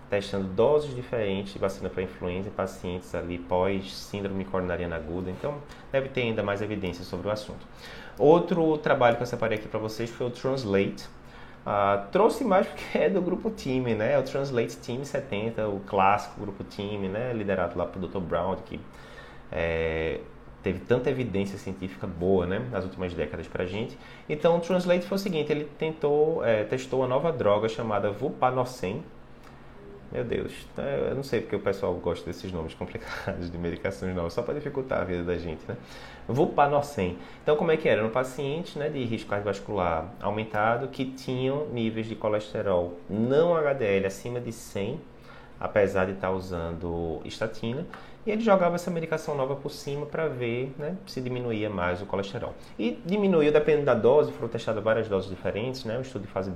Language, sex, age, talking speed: Portuguese, male, 20-39, 180 wpm